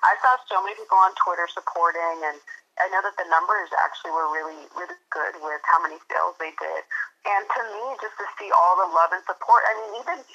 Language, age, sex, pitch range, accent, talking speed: English, 30-49, female, 175-215 Hz, American, 220 wpm